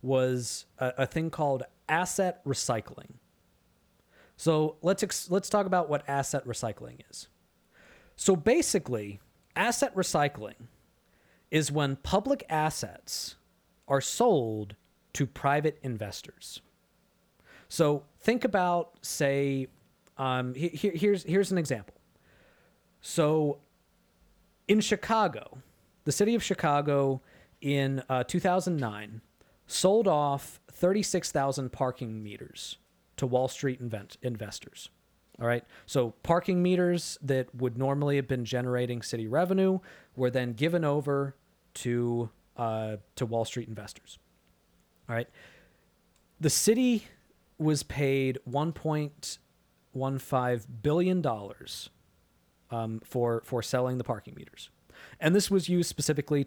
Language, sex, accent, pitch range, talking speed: English, male, American, 120-170 Hz, 110 wpm